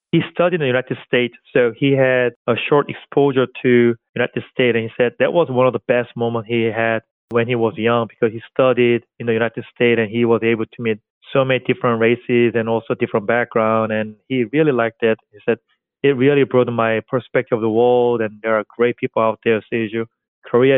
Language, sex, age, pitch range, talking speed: English, male, 30-49, 115-130 Hz, 215 wpm